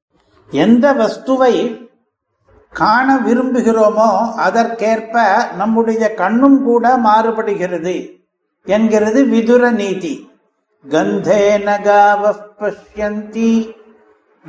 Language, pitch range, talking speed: Tamil, 200-230 Hz, 45 wpm